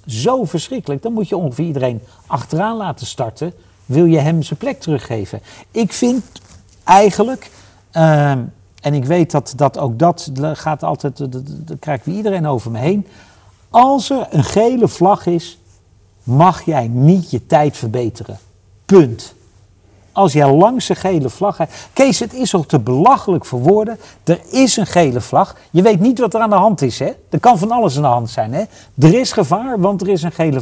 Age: 50-69